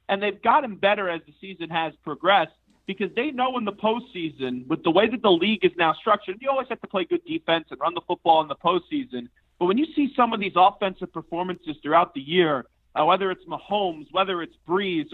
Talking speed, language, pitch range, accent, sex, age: 225 wpm, English, 165-210 Hz, American, male, 40-59